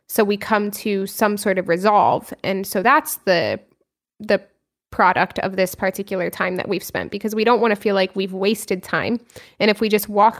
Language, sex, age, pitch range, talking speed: English, female, 20-39, 195-225 Hz, 210 wpm